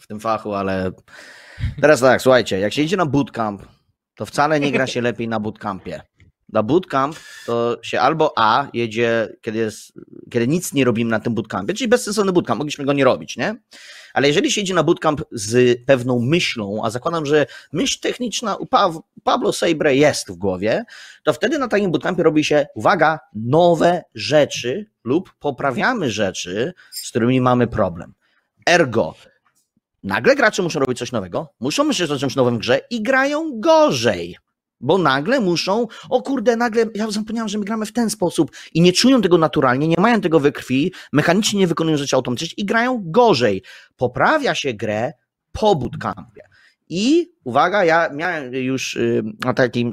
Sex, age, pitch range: male, 30-49, 120-195 Hz